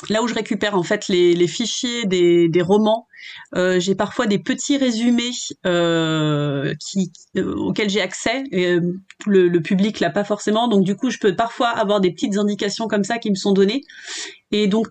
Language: French